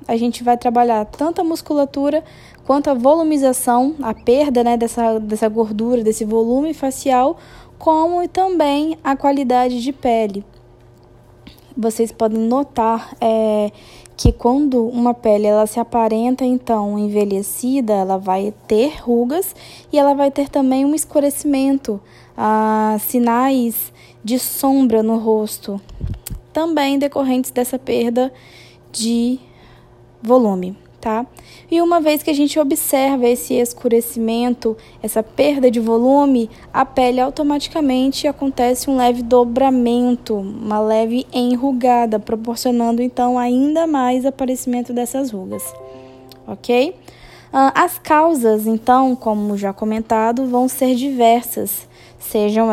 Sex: female